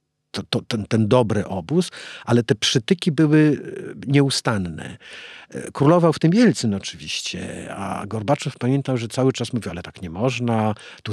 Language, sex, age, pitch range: Polish, male, 50-69, 115-155 Hz